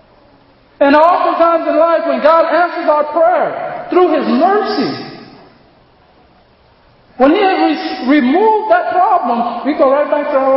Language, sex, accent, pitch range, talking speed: English, male, American, 225-275 Hz, 135 wpm